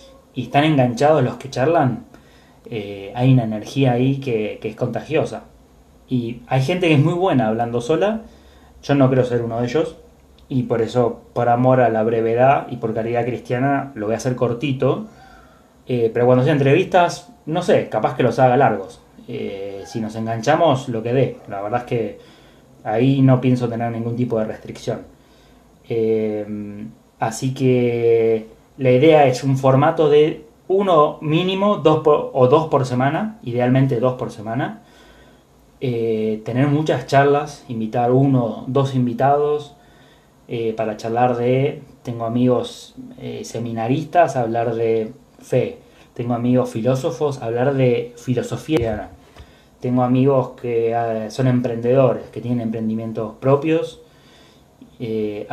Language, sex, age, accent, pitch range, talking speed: Spanish, male, 20-39, Argentinian, 115-140 Hz, 145 wpm